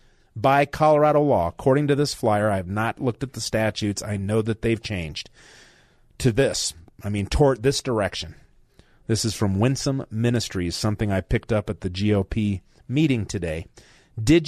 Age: 40-59